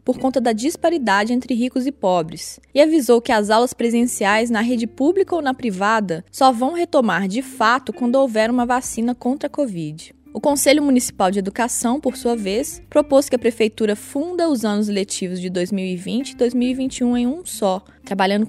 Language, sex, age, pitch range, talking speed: Portuguese, female, 20-39, 205-260 Hz, 180 wpm